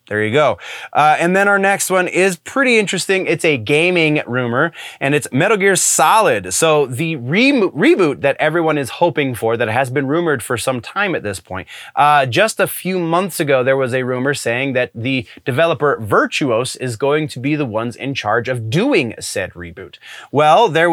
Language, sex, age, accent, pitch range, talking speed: English, male, 20-39, American, 125-160 Hz, 195 wpm